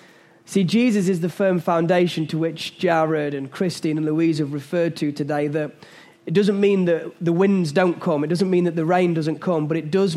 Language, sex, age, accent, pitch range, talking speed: English, male, 20-39, British, 155-185 Hz, 220 wpm